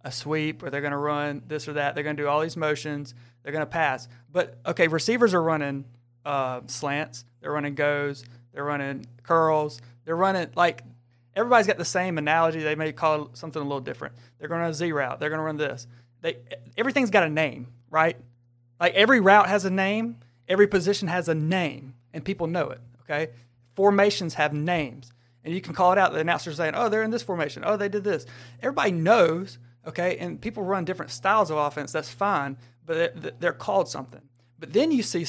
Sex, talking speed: male, 210 wpm